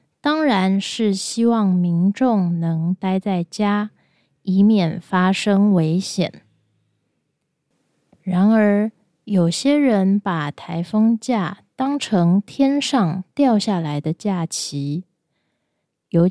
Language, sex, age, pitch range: Japanese, female, 20-39, 170-215 Hz